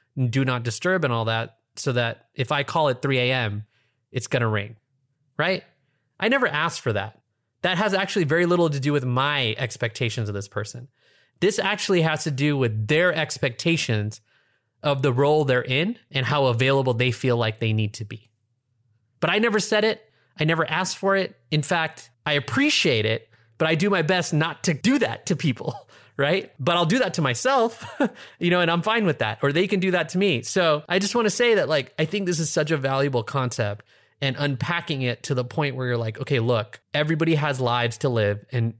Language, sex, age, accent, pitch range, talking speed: English, male, 30-49, American, 120-160 Hz, 220 wpm